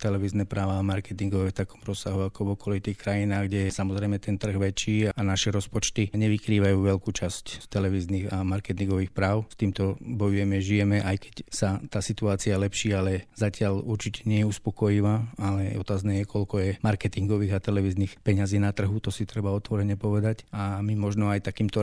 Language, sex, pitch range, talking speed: Slovak, male, 100-105 Hz, 175 wpm